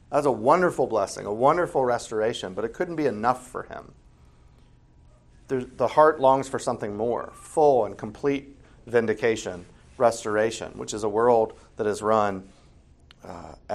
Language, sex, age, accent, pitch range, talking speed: English, male, 40-59, American, 85-125 Hz, 145 wpm